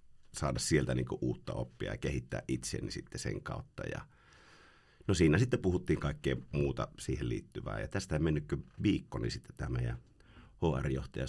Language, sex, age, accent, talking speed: Finnish, male, 50-69, native, 155 wpm